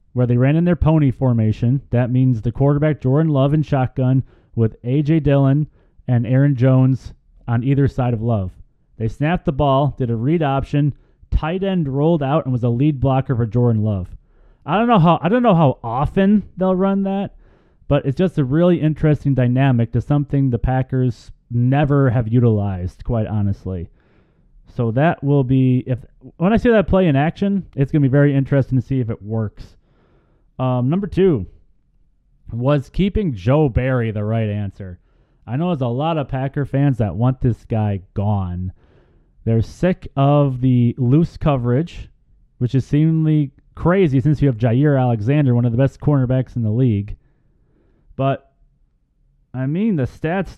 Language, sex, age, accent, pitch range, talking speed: English, male, 30-49, American, 120-150 Hz, 175 wpm